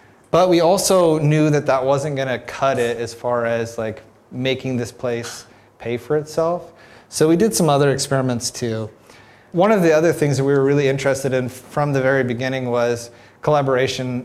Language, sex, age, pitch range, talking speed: English, male, 30-49, 125-145 Hz, 190 wpm